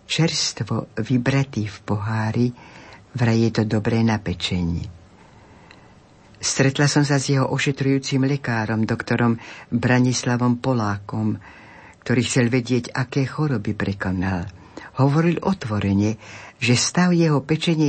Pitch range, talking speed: 110-140 Hz, 105 wpm